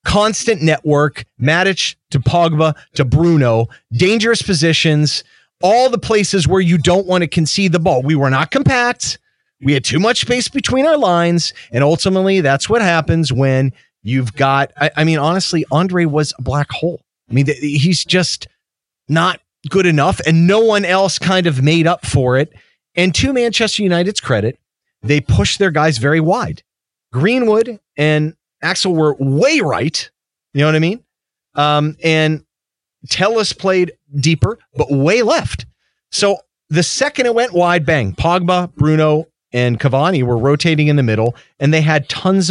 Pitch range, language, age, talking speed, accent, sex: 135-180 Hz, English, 40-59, 165 wpm, American, male